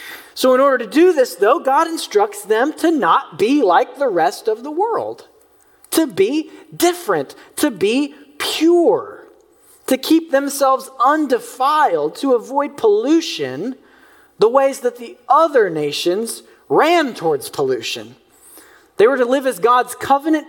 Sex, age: male, 40-59